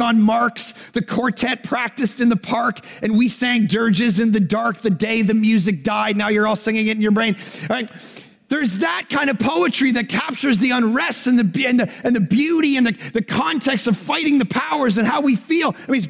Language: English